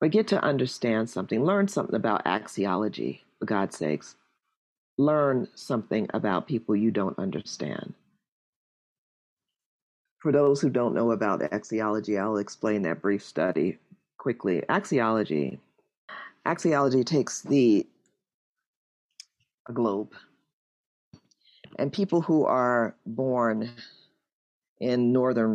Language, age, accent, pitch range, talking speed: English, 40-59, American, 115-150 Hz, 105 wpm